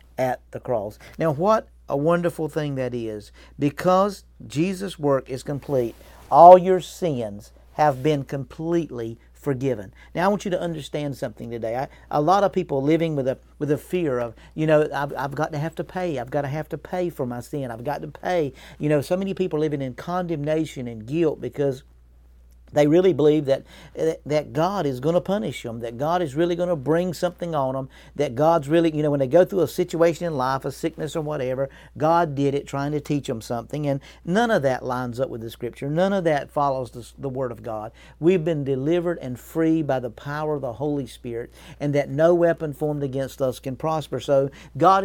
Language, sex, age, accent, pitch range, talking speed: English, male, 50-69, American, 130-165 Hz, 215 wpm